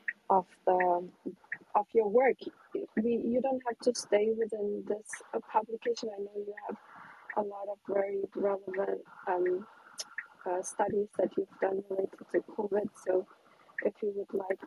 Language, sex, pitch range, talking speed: English, female, 195-240 Hz, 155 wpm